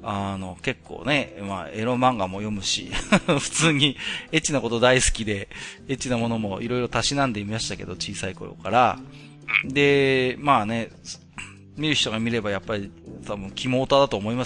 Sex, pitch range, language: male, 100-150 Hz, Japanese